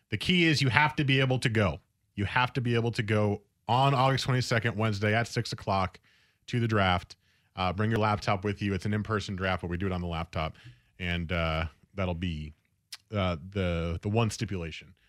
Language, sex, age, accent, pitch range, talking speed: English, male, 30-49, American, 100-145 Hz, 210 wpm